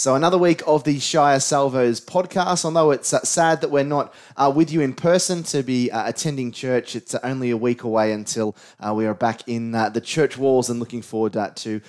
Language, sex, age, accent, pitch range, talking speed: English, male, 20-39, Australian, 110-145 Hz, 220 wpm